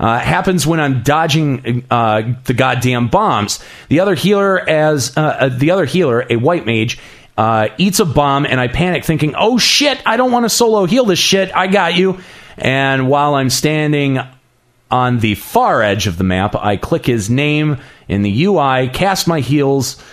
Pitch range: 115-165 Hz